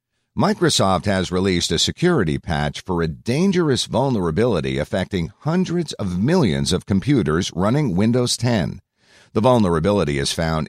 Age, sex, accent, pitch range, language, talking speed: 50-69, male, American, 80-120 Hz, English, 130 wpm